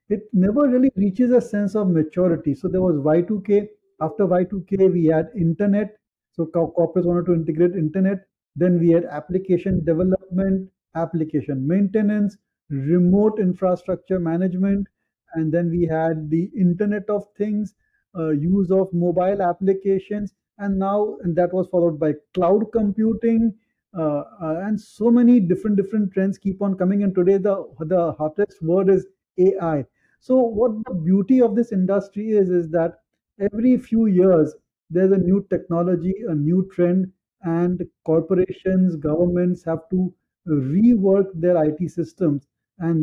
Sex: male